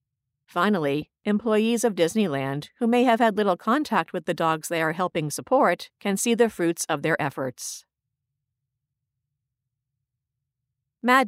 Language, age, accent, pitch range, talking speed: English, 50-69, American, 140-220 Hz, 135 wpm